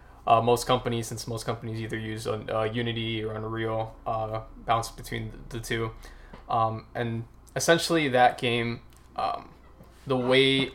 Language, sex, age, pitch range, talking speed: English, male, 20-39, 110-130 Hz, 145 wpm